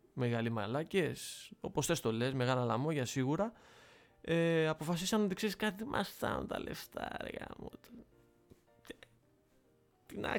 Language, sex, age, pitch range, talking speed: Greek, male, 20-39, 135-195 Hz, 140 wpm